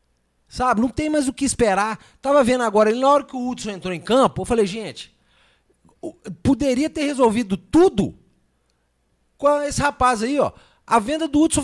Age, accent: 40-59, Brazilian